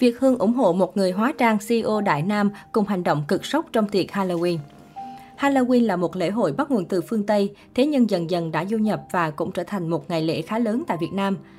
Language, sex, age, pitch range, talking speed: Vietnamese, female, 20-39, 175-230 Hz, 250 wpm